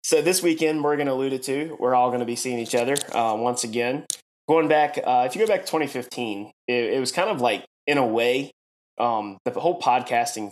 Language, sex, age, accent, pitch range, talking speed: English, male, 20-39, American, 115-135 Hz, 220 wpm